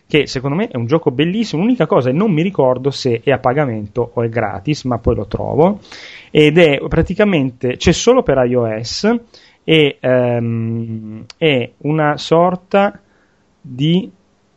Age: 30-49